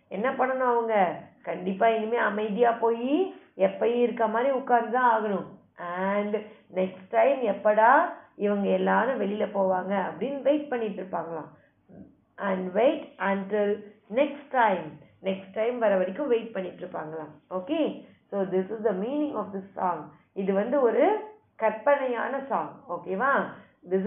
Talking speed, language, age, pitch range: 100 wpm, Tamil, 20-39, 195-255 Hz